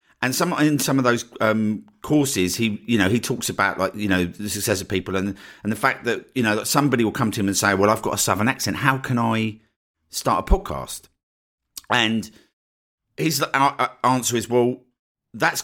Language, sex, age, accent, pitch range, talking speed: English, male, 50-69, British, 100-130 Hz, 205 wpm